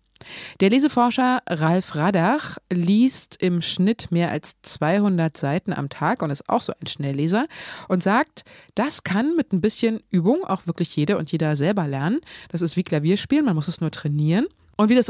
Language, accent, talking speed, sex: German, German, 185 wpm, female